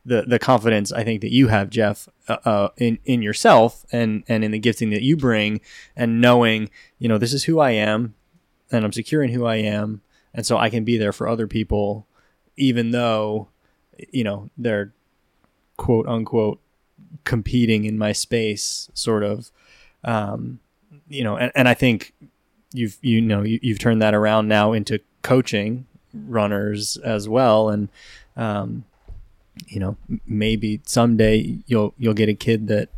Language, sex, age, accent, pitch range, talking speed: English, male, 20-39, American, 105-120 Hz, 165 wpm